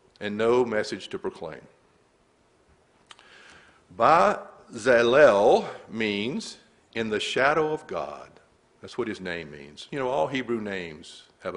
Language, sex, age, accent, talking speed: English, male, 50-69, American, 120 wpm